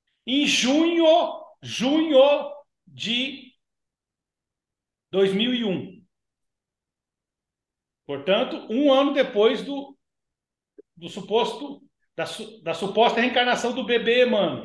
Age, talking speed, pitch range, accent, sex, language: 60-79, 80 wpm, 225-290 Hz, Brazilian, male, Portuguese